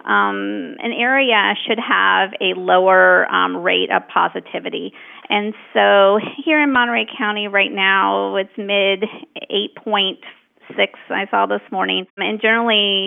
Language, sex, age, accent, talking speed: English, female, 40-59, American, 130 wpm